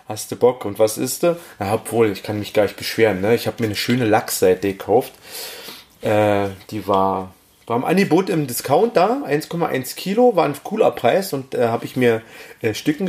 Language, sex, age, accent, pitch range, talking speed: German, male, 30-49, German, 110-155 Hz, 200 wpm